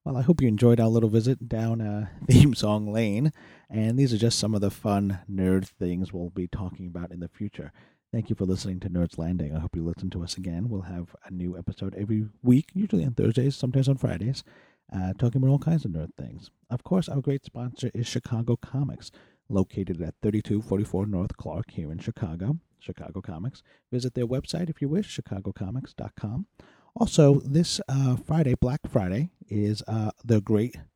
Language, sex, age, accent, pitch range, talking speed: English, male, 40-59, American, 95-130 Hz, 195 wpm